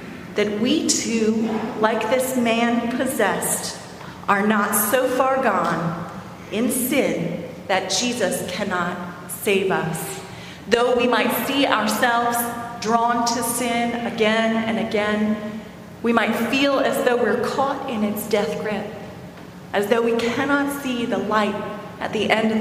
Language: English